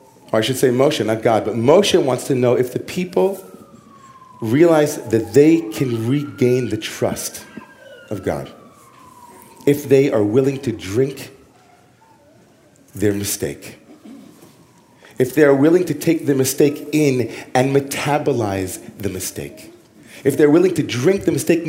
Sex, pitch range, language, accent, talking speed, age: male, 135-170 Hz, English, American, 145 wpm, 40-59